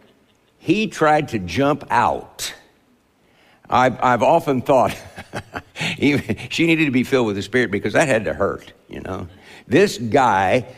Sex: male